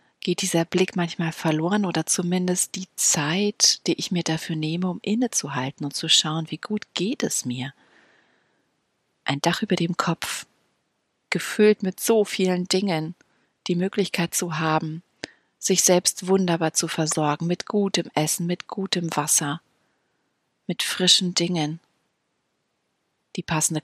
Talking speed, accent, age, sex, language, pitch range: 135 wpm, German, 40-59, female, German, 150-190 Hz